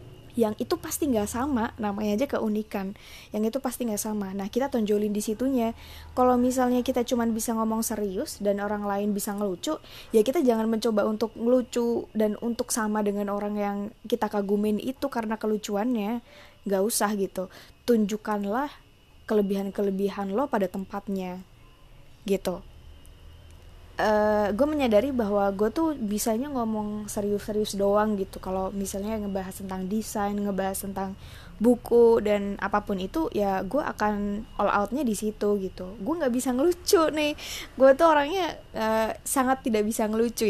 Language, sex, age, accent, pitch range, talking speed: Indonesian, female, 20-39, native, 200-235 Hz, 145 wpm